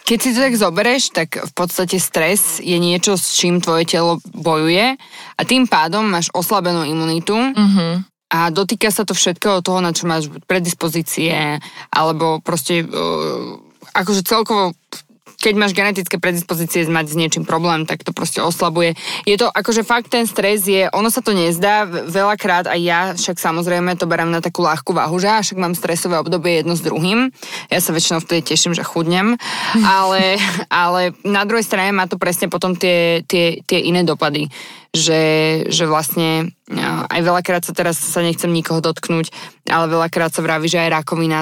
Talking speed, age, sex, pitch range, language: 170 wpm, 20-39, female, 165-195 Hz, Slovak